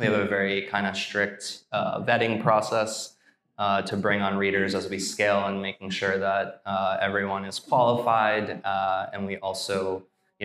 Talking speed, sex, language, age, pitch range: 180 wpm, male, English, 20-39, 95-105 Hz